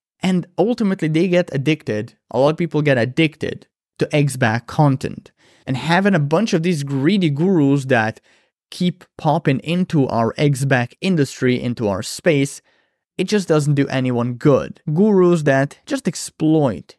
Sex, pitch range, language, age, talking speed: male, 120-155 Hz, English, 20-39, 150 wpm